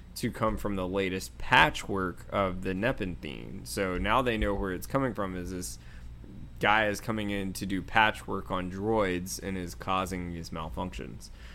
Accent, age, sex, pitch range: American, 20-39, male, 95-120 Hz